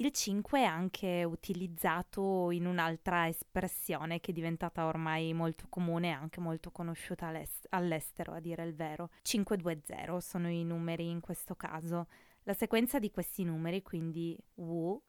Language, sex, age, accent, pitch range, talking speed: Italian, female, 20-39, native, 160-185 Hz, 150 wpm